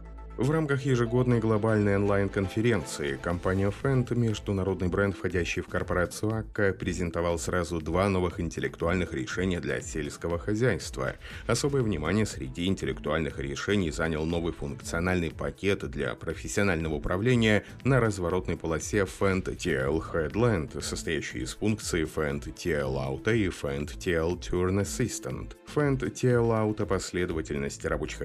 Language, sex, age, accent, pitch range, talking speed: Russian, male, 30-49, native, 80-105 Hz, 115 wpm